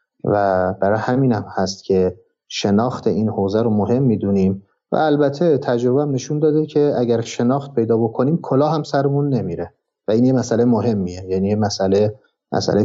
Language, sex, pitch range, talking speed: Persian, male, 100-130 Hz, 170 wpm